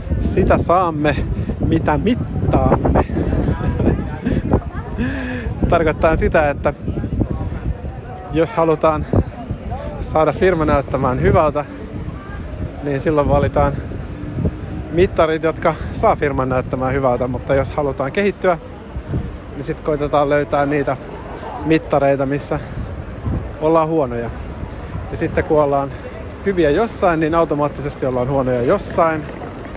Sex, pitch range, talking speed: male, 125-160 Hz, 95 wpm